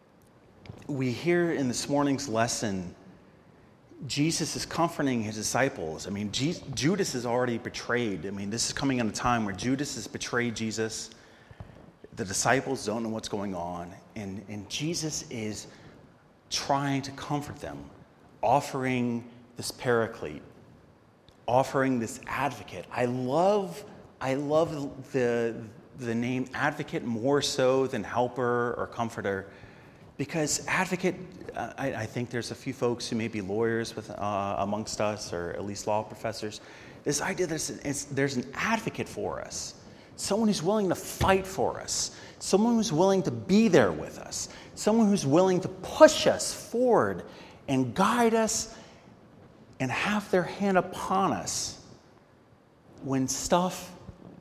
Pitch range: 115-155 Hz